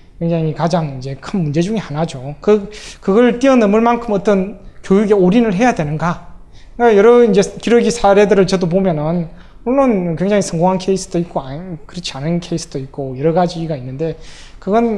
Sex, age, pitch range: male, 20-39, 155-200 Hz